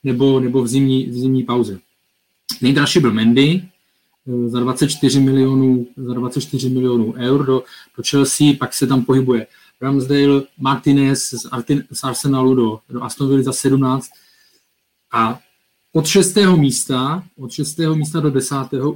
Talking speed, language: 140 wpm, Czech